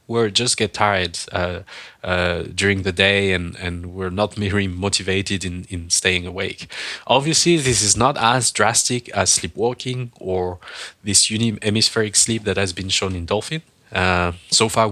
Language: English